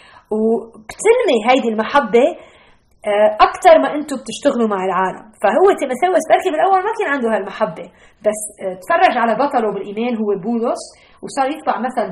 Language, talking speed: Arabic, 140 wpm